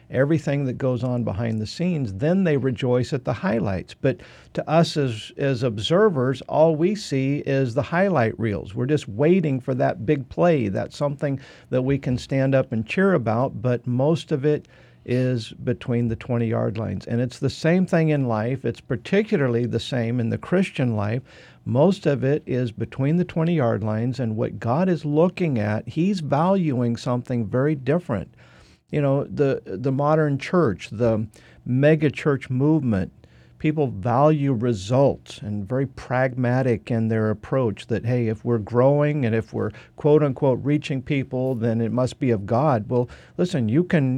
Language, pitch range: English, 115-150 Hz